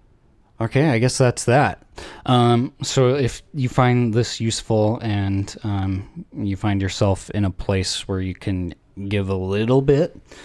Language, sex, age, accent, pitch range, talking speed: English, male, 20-39, American, 95-115 Hz, 155 wpm